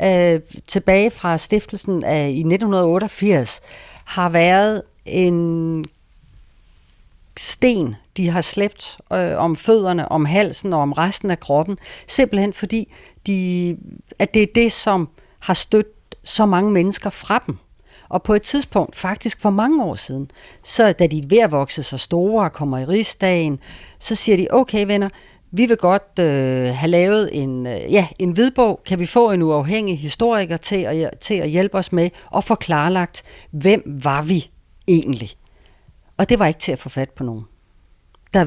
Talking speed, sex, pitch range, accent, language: 165 wpm, female, 150-205 Hz, native, Danish